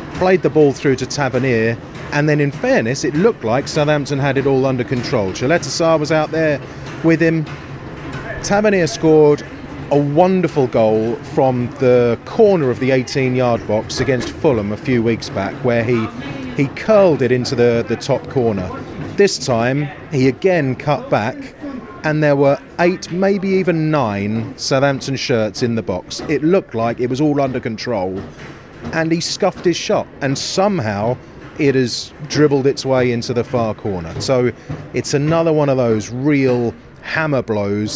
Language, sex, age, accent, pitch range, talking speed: English, male, 30-49, British, 120-150 Hz, 165 wpm